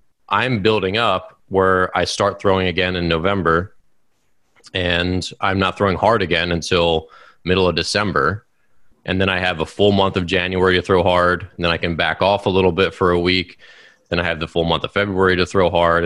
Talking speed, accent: 205 wpm, American